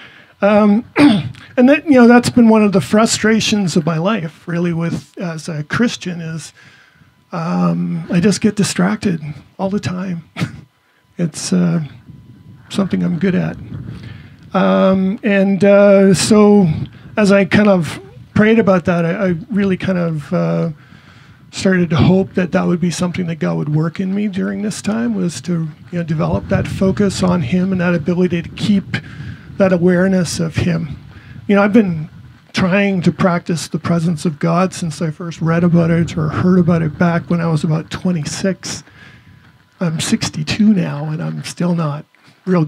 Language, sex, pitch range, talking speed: English, male, 160-195 Hz, 170 wpm